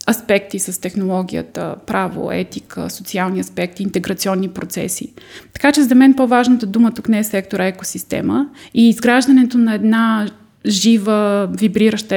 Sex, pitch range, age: female, 200-235 Hz, 20-39